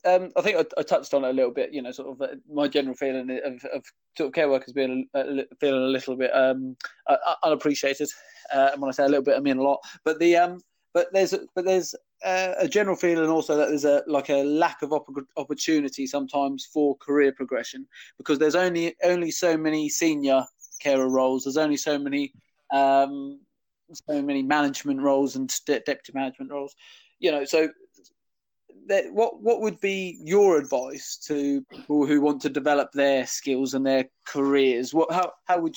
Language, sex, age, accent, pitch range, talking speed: English, male, 20-39, British, 140-170 Hz, 190 wpm